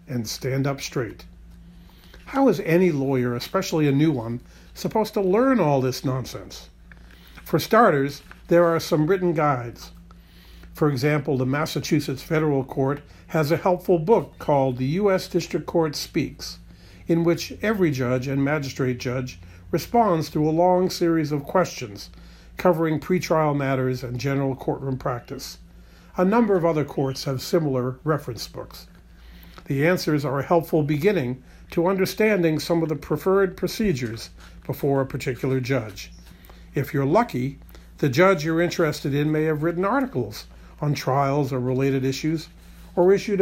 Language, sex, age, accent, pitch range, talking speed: English, male, 50-69, American, 130-170 Hz, 150 wpm